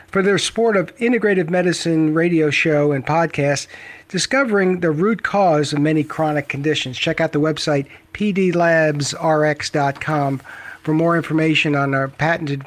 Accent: American